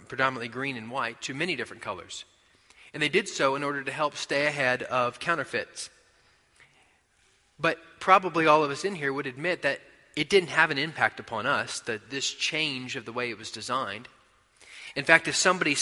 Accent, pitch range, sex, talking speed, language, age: American, 125-155 Hz, male, 190 wpm, English, 30-49